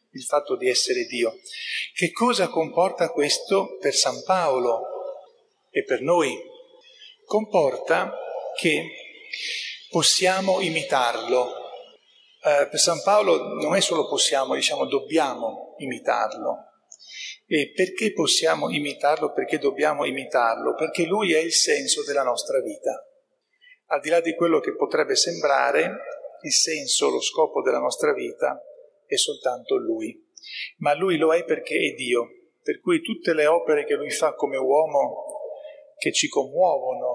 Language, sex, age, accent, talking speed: Italian, male, 40-59, native, 135 wpm